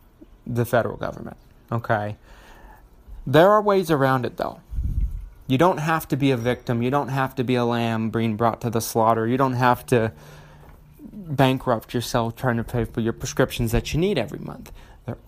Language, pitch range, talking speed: English, 115-150 Hz, 185 wpm